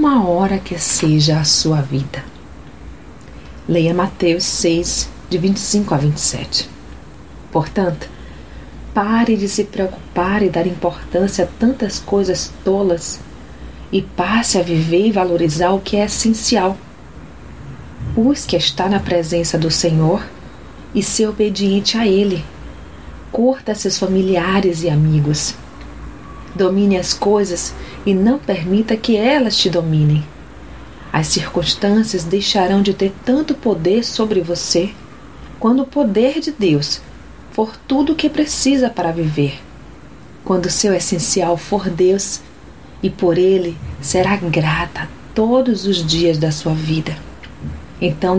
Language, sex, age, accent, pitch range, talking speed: Portuguese, female, 40-59, Brazilian, 160-210 Hz, 125 wpm